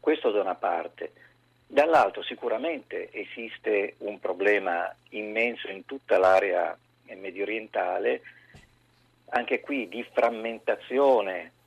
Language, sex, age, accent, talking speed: Italian, male, 50-69, native, 95 wpm